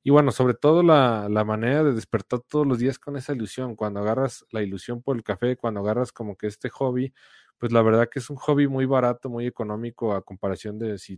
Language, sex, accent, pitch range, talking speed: Spanish, male, Mexican, 105-125 Hz, 230 wpm